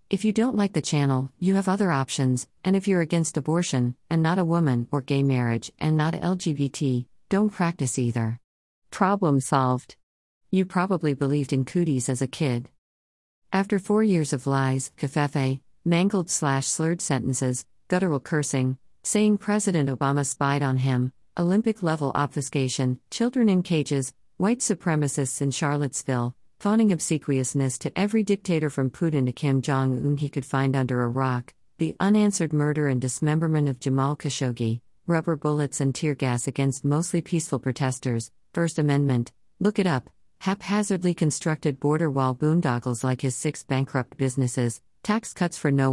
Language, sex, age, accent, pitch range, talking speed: English, female, 50-69, American, 130-165 Hz, 150 wpm